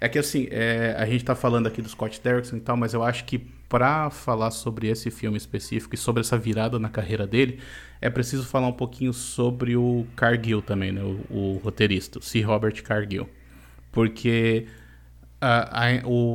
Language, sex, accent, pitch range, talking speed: Portuguese, male, Brazilian, 105-125 Hz, 175 wpm